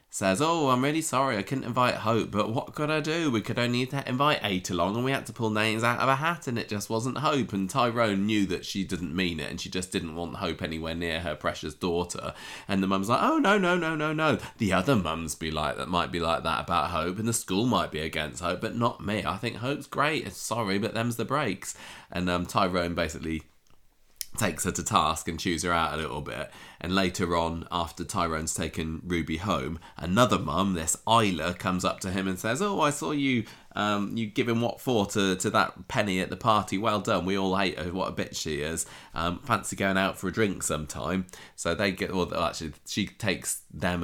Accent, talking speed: British, 235 wpm